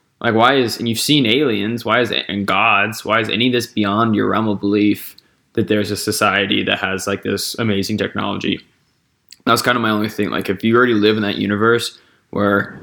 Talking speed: 220 wpm